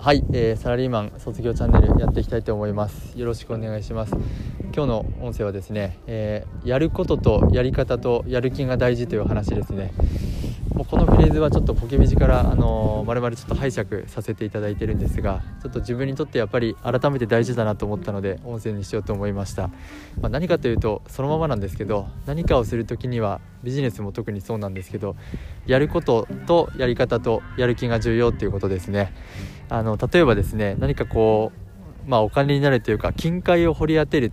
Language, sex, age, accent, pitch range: Japanese, male, 20-39, native, 100-130 Hz